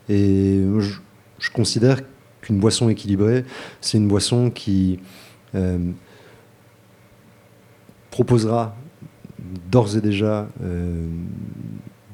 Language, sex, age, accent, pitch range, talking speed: French, male, 30-49, French, 100-120 Hz, 85 wpm